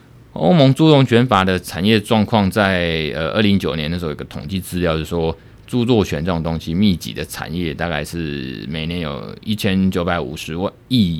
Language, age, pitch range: Chinese, 20-39, 80-110 Hz